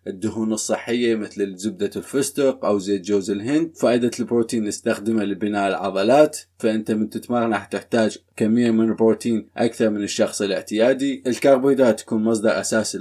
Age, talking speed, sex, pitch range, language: 20-39, 135 wpm, male, 105-130 Hz, Arabic